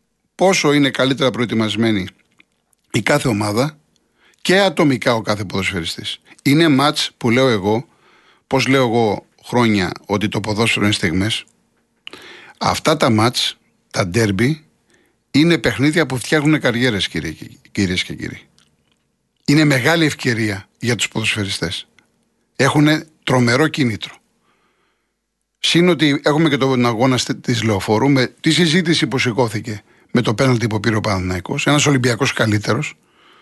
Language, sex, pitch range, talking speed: Greek, male, 115-155 Hz, 125 wpm